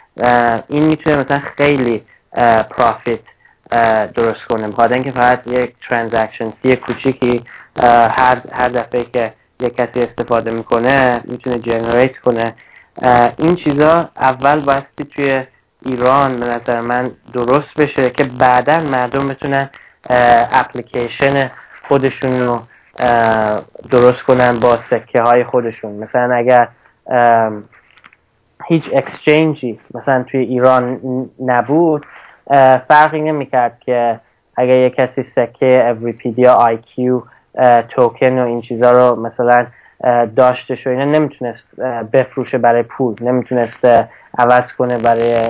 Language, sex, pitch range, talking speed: Persian, male, 120-135 Hz, 115 wpm